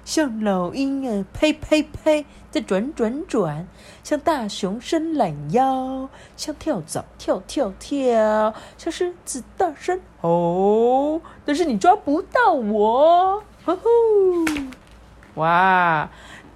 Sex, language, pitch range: female, Chinese, 185-310 Hz